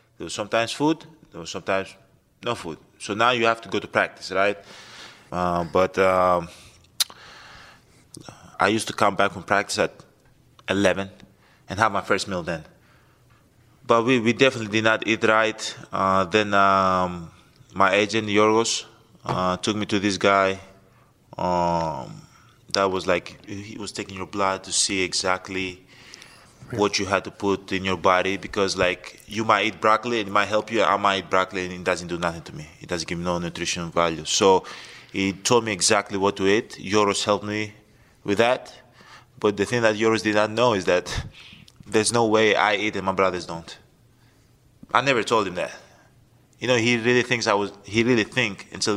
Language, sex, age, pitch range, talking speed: English, male, 20-39, 95-115 Hz, 185 wpm